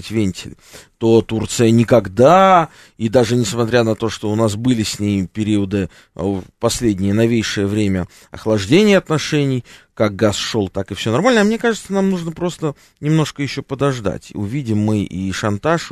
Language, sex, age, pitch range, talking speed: Russian, male, 20-39, 100-135 Hz, 160 wpm